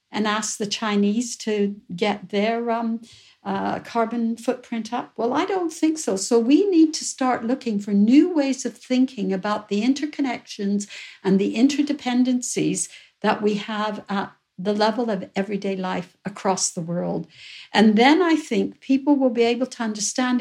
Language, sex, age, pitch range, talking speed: English, female, 60-79, 200-260 Hz, 165 wpm